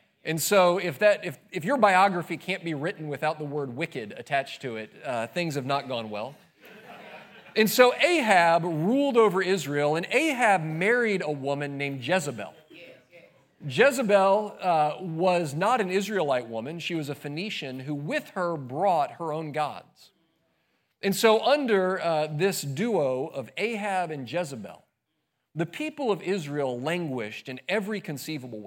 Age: 40-59